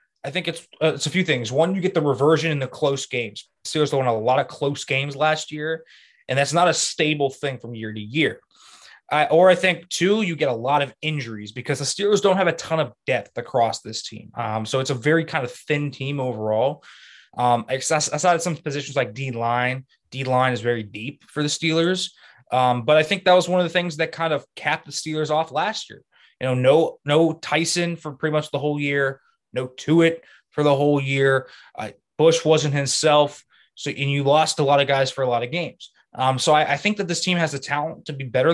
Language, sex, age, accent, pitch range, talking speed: English, male, 20-39, American, 130-165 Hz, 235 wpm